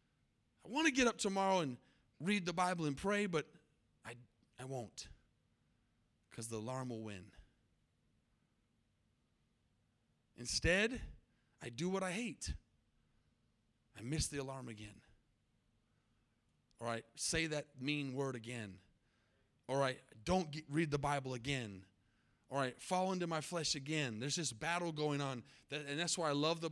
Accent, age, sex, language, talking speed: American, 30-49, male, English, 145 wpm